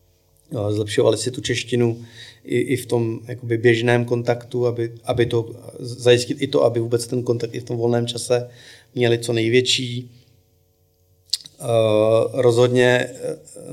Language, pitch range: Czech, 115-120 Hz